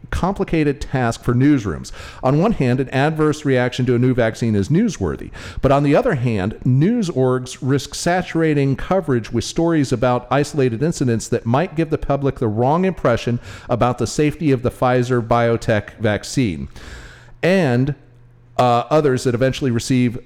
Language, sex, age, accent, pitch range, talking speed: English, male, 40-59, American, 115-160 Hz, 155 wpm